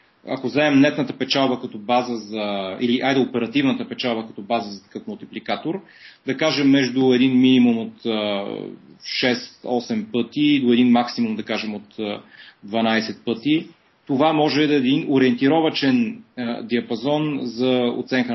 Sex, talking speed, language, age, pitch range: male, 135 wpm, Bulgarian, 30-49, 115-145 Hz